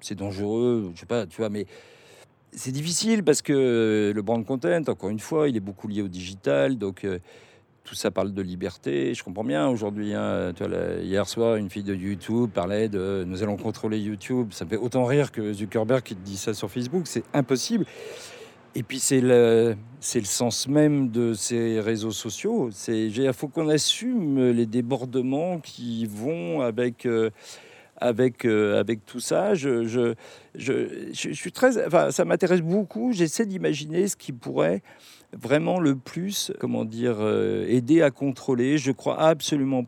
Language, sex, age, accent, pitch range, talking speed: French, male, 50-69, French, 105-135 Hz, 180 wpm